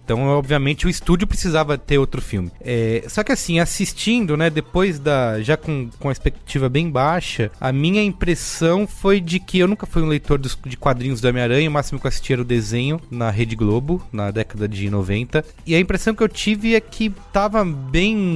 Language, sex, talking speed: English, male, 205 wpm